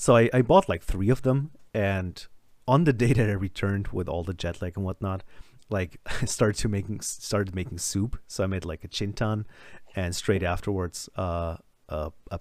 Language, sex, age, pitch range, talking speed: English, male, 30-49, 95-115 Hz, 195 wpm